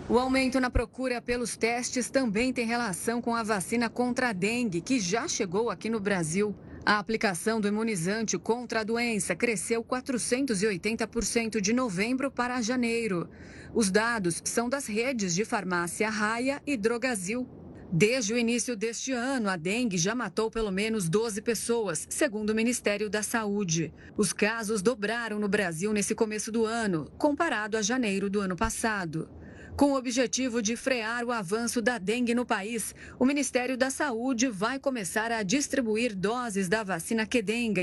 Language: Portuguese